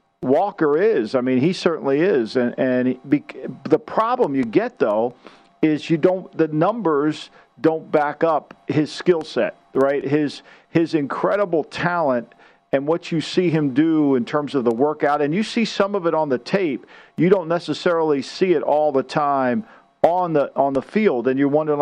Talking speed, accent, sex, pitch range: 185 wpm, American, male, 135-165 Hz